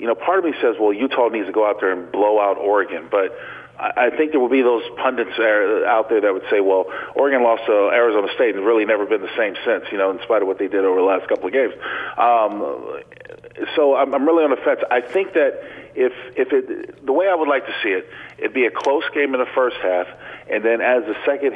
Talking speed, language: 255 wpm, English